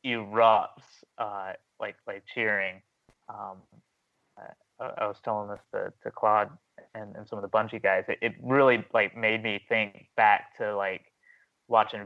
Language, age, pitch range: English, 20-39, 100-110 Hz